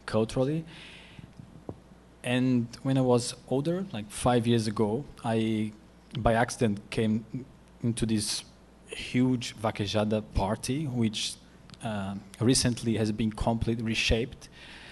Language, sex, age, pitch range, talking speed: English, male, 20-39, 110-130 Hz, 105 wpm